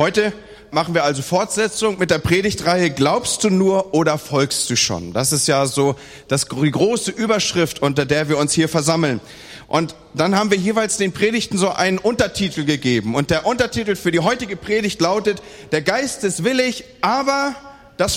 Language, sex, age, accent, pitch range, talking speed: German, male, 40-59, German, 150-215 Hz, 175 wpm